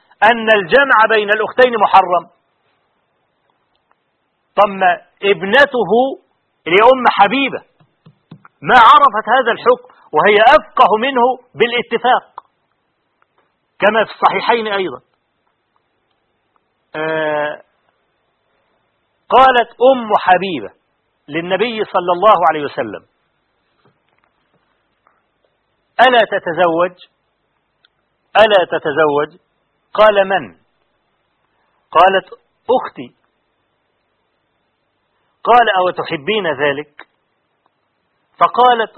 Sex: male